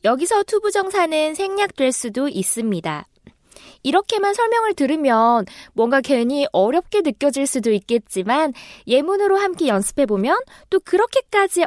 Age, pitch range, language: 20-39, 230-360 Hz, Korean